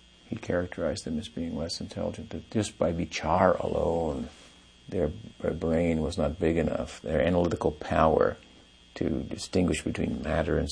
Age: 50-69